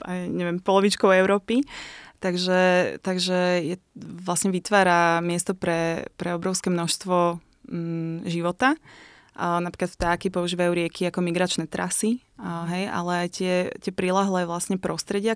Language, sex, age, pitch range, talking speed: Slovak, female, 20-39, 170-190 Hz, 125 wpm